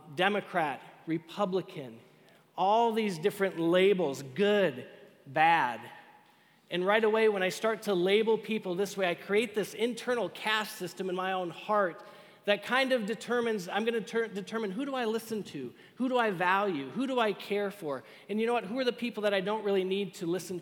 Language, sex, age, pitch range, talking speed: English, male, 40-59, 170-210 Hz, 190 wpm